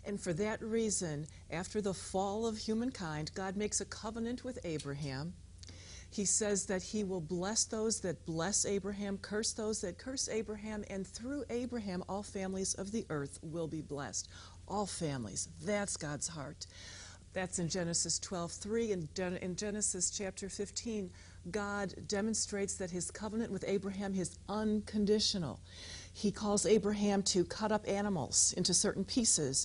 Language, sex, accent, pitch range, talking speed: English, female, American, 170-210 Hz, 150 wpm